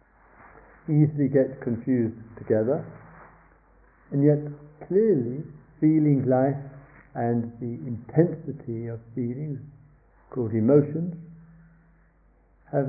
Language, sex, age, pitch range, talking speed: English, male, 60-79, 115-155 Hz, 80 wpm